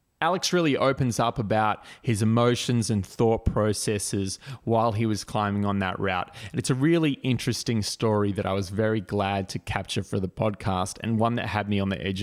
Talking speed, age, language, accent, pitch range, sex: 200 wpm, 20-39, English, Australian, 100-125 Hz, male